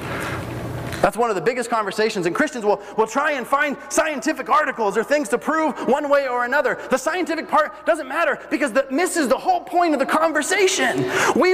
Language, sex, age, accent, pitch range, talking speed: English, male, 30-49, American, 210-320 Hz, 200 wpm